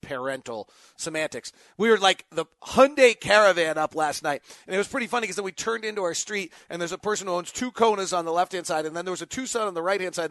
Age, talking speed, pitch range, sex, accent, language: 40-59, 260 wpm, 165-210 Hz, male, American, English